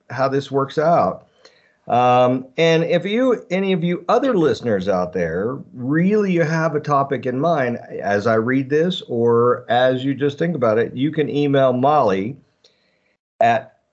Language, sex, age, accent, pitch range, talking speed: English, male, 50-69, American, 125-165 Hz, 165 wpm